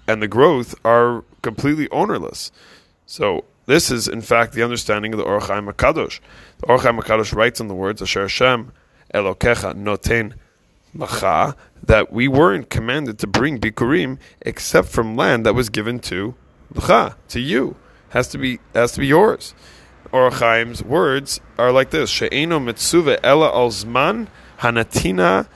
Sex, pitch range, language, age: male, 110-130 Hz, English, 20-39